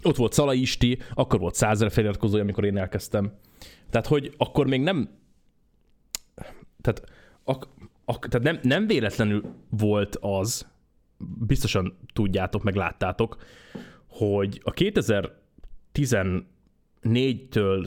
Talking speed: 105 wpm